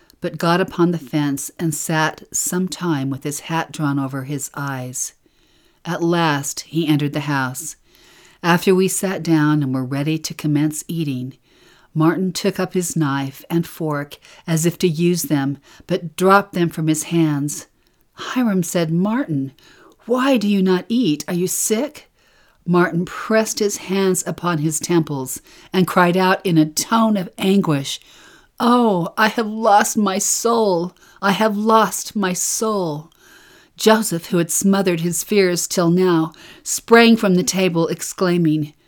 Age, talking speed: 50-69, 155 wpm